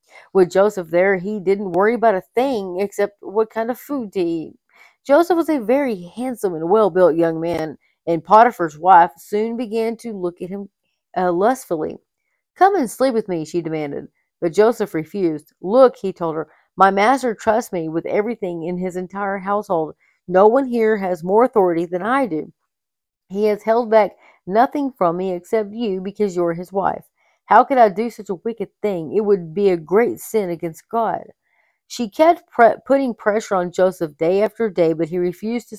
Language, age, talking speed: English, 40-59, 190 wpm